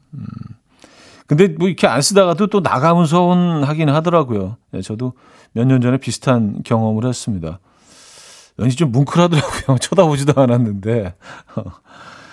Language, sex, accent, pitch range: Korean, male, native, 115-160 Hz